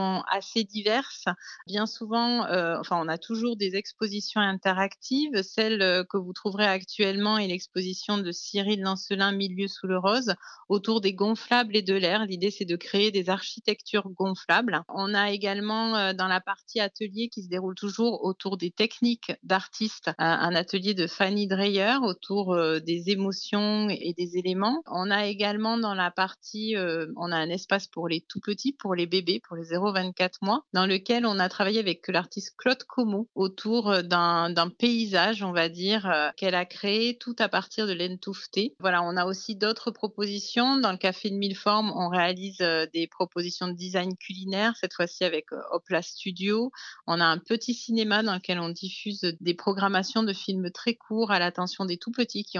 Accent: French